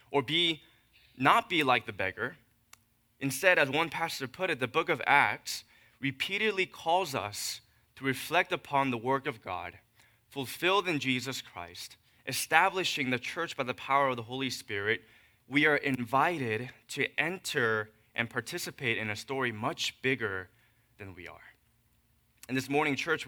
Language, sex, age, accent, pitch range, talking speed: English, male, 20-39, American, 115-140 Hz, 155 wpm